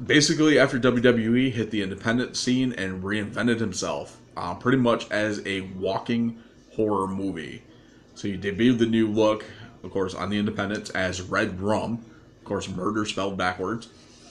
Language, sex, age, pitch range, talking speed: English, male, 20-39, 95-115 Hz, 155 wpm